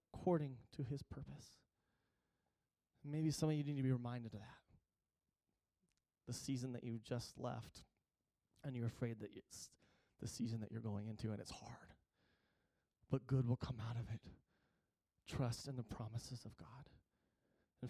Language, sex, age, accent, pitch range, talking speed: English, male, 30-49, American, 120-150 Hz, 160 wpm